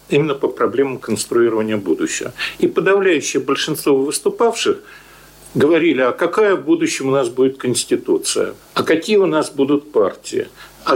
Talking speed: 135 wpm